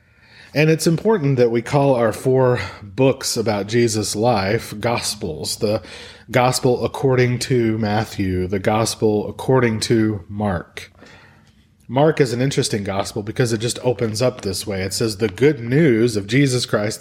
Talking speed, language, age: 150 wpm, English, 30-49